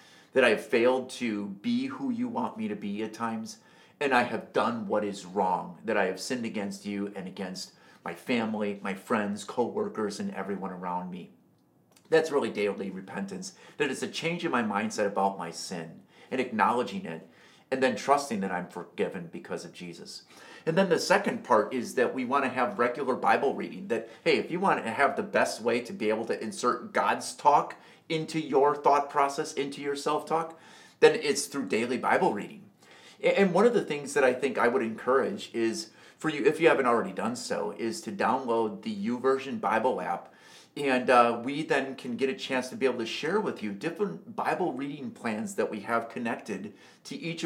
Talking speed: 205 wpm